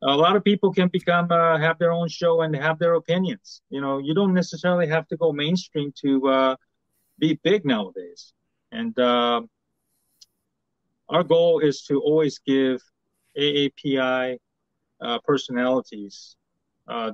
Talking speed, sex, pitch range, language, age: 145 wpm, male, 125-170 Hz, English, 30-49